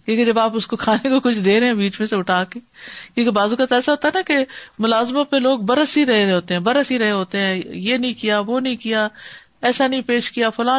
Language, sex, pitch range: Urdu, female, 195-260 Hz